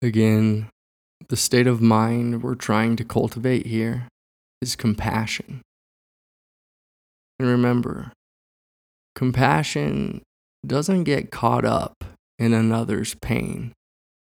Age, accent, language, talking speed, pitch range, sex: 20-39, American, English, 90 wpm, 95-125 Hz, male